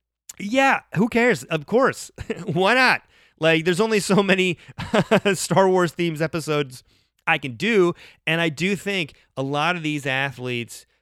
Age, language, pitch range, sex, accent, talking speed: 30-49, English, 115-155 Hz, male, American, 155 wpm